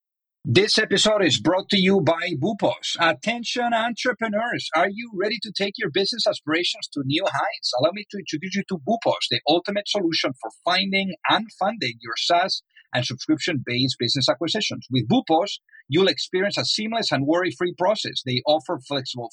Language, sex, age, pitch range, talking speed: English, male, 50-69, 145-200 Hz, 165 wpm